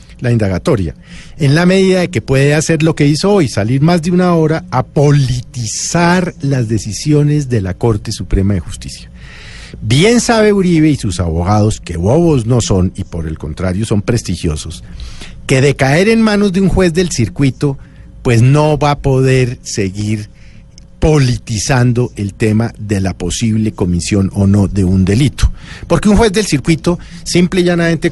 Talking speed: 170 wpm